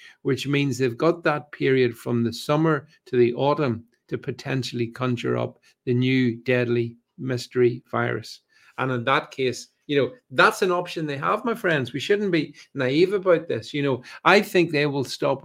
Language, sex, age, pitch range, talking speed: English, male, 50-69, 120-155 Hz, 185 wpm